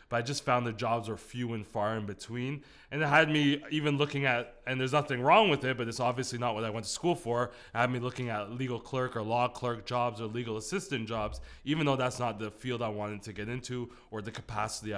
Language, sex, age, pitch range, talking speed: English, male, 20-39, 115-130 Hz, 255 wpm